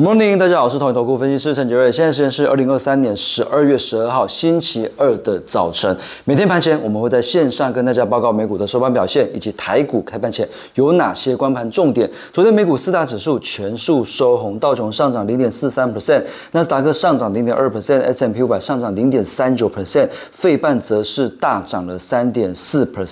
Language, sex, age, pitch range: Chinese, male, 30-49, 110-145 Hz